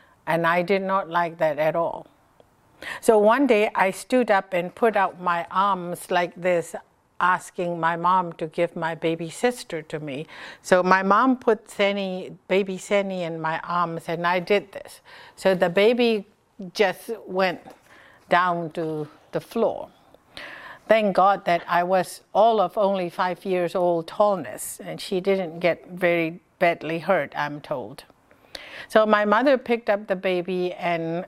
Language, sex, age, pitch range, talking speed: English, female, 60-79, 165-200 Hz, 155 wpm